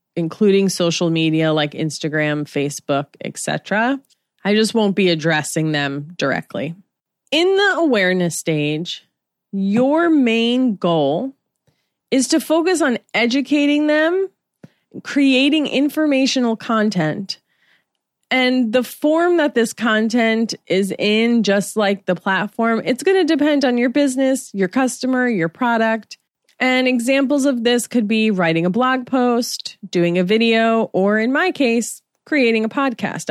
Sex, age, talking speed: female, 20-39, 130 wpm